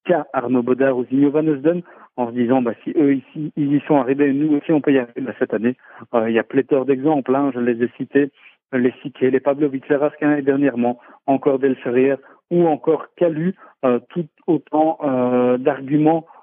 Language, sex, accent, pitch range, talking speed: French, male, French, 125-150 Hz, 195 wpm